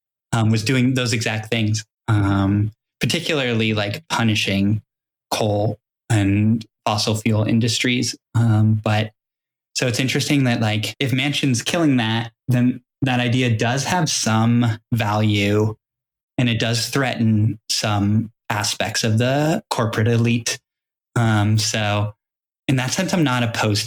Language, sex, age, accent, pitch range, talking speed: English, male, 10-29, American, 105-120 Hz, 130 wpm